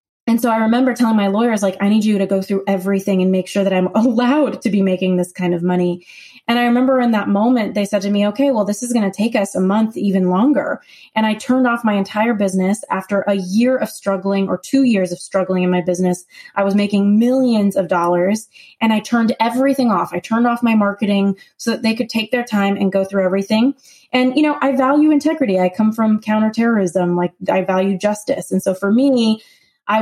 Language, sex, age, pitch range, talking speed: English, female, 20-39, 195-230 Hz, 230 wpm